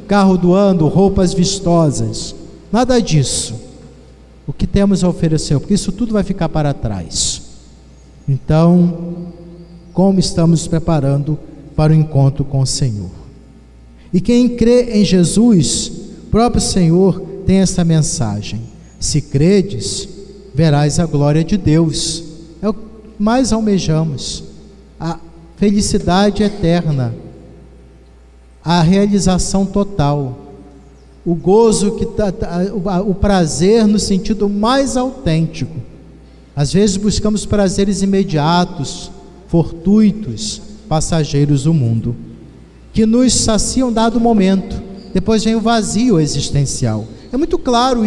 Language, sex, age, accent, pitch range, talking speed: Portuguese, male, 50-69, Brazilian, 145-205 Hz, 110 wpm